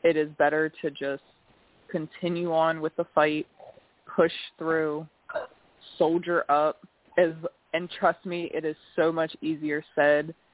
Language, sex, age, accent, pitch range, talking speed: English, female, 20-39, American, 150-165 Hz, 130 wpm